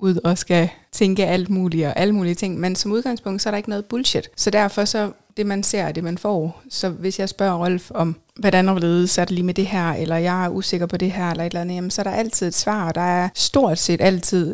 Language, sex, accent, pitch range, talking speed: Danish, female, native, 165-195 Hz, 275 wpm